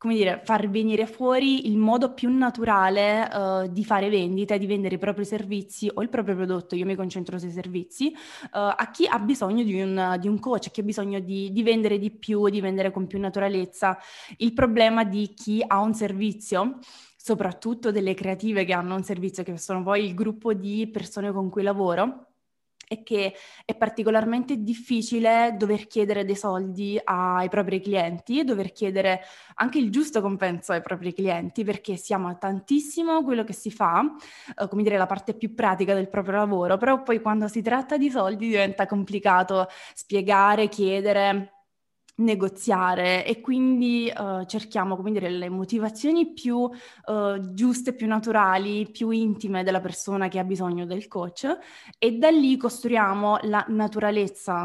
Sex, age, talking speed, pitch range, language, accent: female, 20-39, 165 wpm, 190-230 Hz, Italian, native